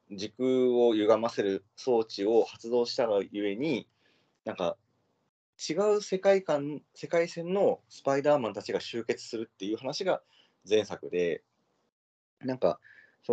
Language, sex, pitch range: Japanese, male, 95-155 Hz